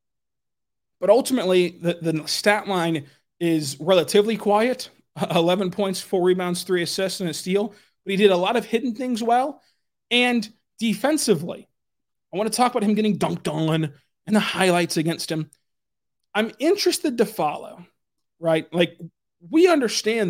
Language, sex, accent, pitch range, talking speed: English, male, American, 175-225 Hz, 150 wpm